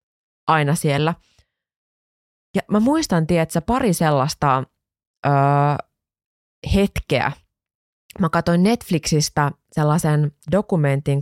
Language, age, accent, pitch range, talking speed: Finnish, 20-39, native, 140-175 Hz, 80 wpm